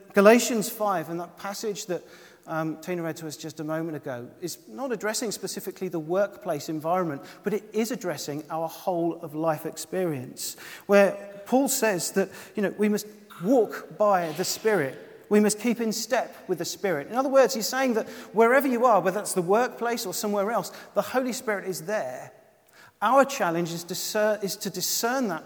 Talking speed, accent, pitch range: 180 wpm, British, 180-225 Hz